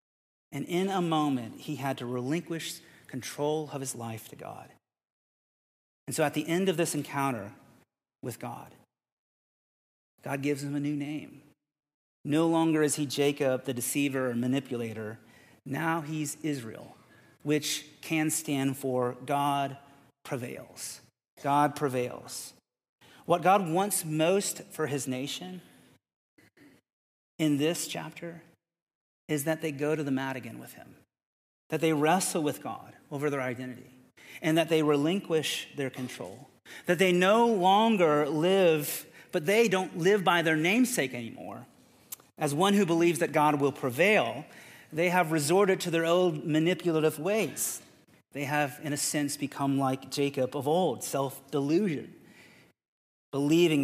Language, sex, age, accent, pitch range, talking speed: English, male, 40-59, American, 135-170 Hz, 140 wpm